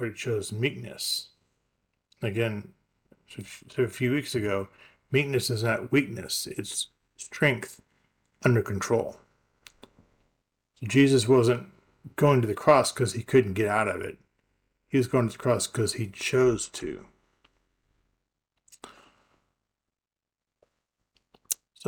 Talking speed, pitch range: 110 wpm, 105-130 Hz